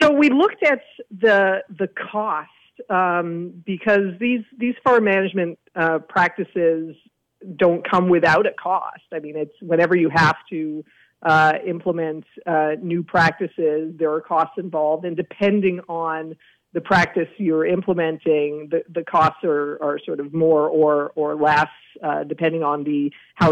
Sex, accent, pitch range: female, American, 160-190 Hz